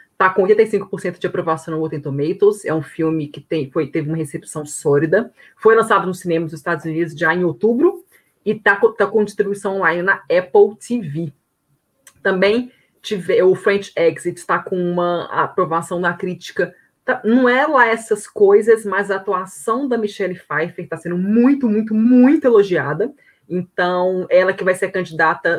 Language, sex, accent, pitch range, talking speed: Portuguese, female, Brazilian, 165-215 Hz, 160 wpm